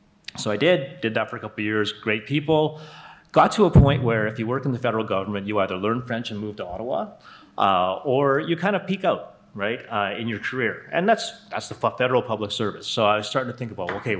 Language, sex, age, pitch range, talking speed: English, male, 30-49, 105-125 Hz, 250 wpm